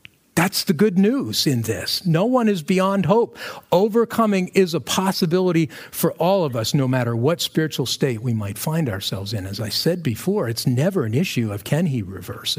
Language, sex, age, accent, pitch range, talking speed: English, male, 50-69, American, 120-175 Hz, 195 wpm